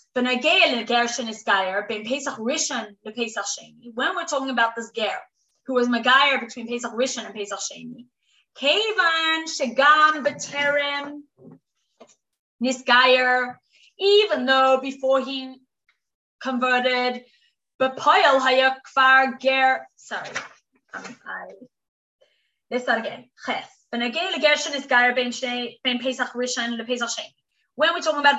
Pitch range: 235-285 Hz